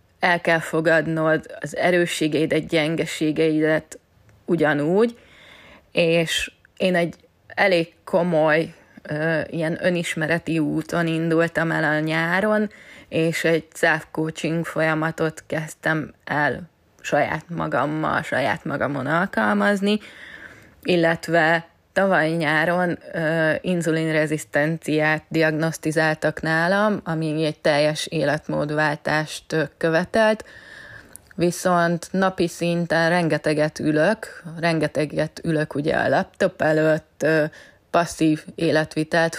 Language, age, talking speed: Hungarian, 20-39, 85 wpm